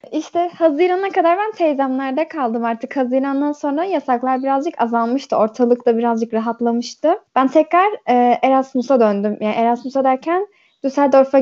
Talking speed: 130 wpm